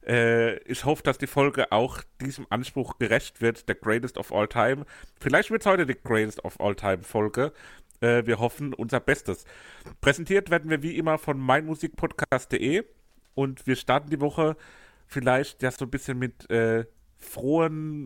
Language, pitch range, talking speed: German, 110-135 Hz, 160 wpm